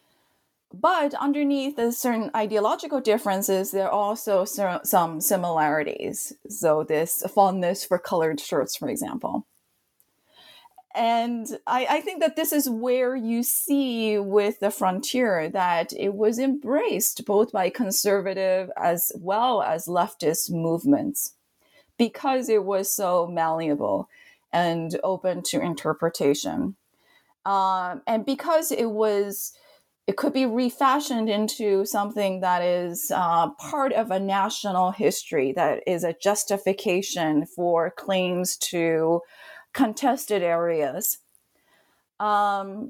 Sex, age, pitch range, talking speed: female, 30-49, 180-245 Hz, 115 wpm